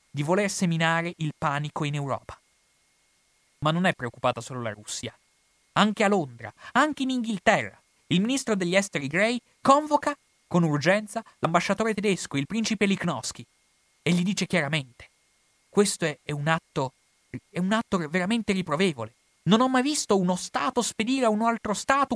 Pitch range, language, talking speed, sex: 130-200 Hz, Italian, 155 wpm, male